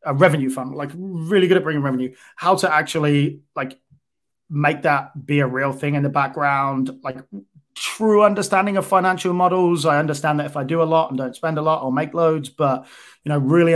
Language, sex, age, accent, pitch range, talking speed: English, male, 20-39, British, 135-160 Hz, 210 wpm